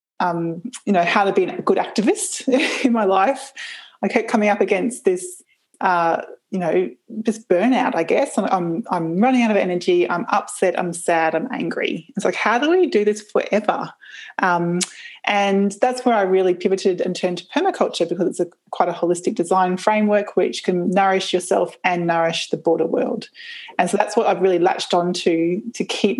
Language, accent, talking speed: English, Australian, 190 wpm